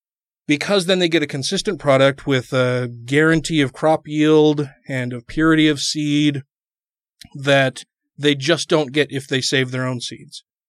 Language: English